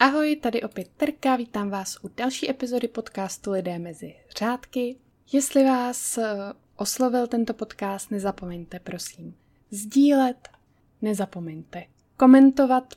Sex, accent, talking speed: female, native, 105 wpm